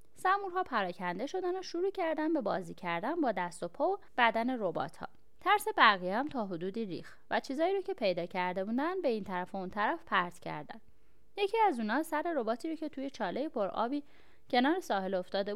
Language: Persian